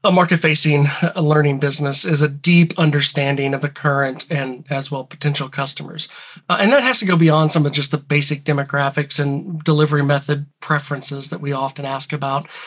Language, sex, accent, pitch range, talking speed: English, male, American, 145-165 Hz, 180 wpm